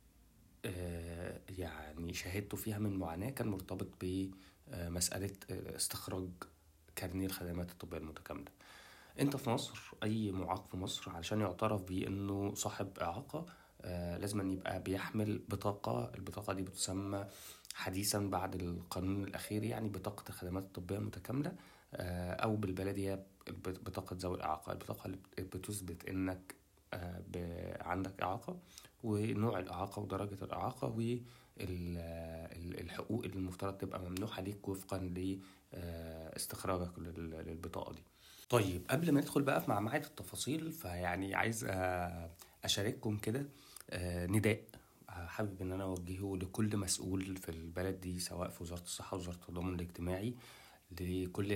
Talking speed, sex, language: 115 wpm, male, Arabic